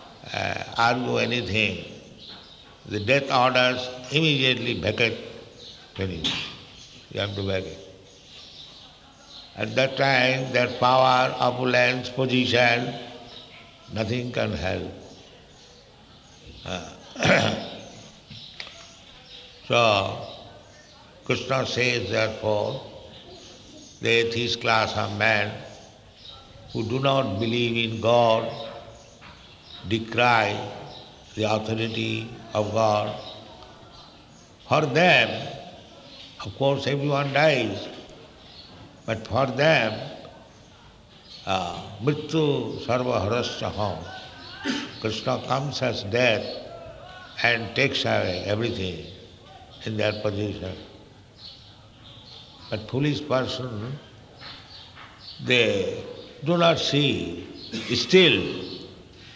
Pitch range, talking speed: 105-130 Hz, 75 wpm